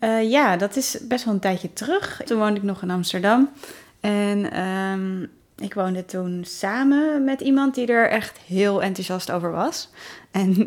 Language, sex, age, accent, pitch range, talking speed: Dutch, female, 30-49, Dutch, 180-220 Hz, 170 wpm